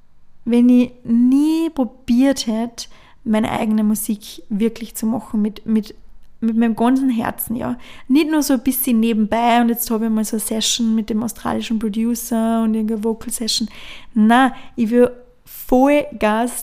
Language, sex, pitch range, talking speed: German, female, 225-260 Hz, 160 wpm